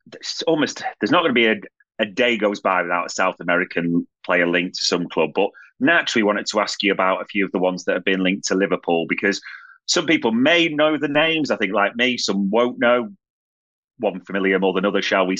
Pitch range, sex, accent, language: 100-140 Hz, male, British, English